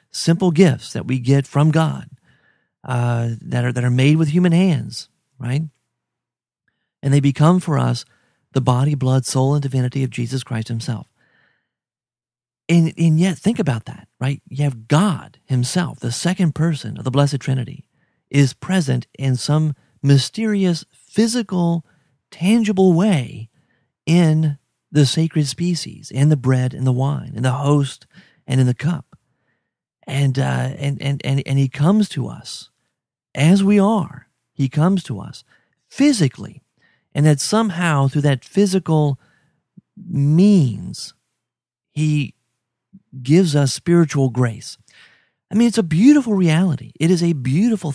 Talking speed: 145 wpm